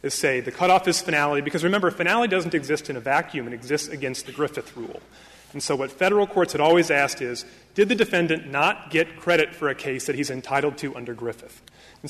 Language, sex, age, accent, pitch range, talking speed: English, male, 30-49, American, 145-185 Hz, 225 wpm